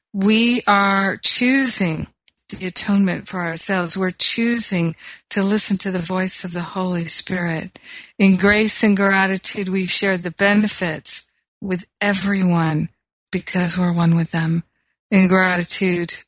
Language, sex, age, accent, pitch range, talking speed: English, female, 50-69, American, 180-215 Hz, 130 wpm